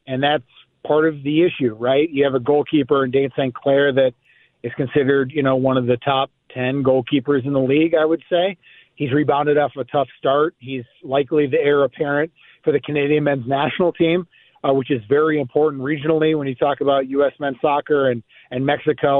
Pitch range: 135-165 Hz